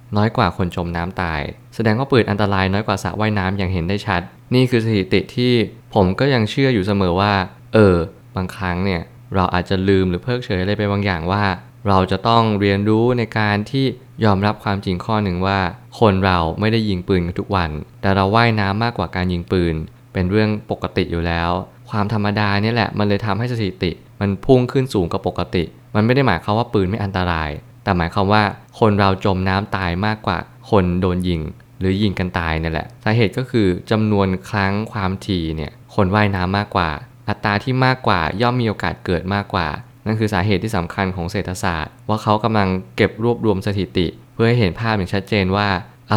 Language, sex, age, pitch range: Thai, male, 20-39, 95-110 Hz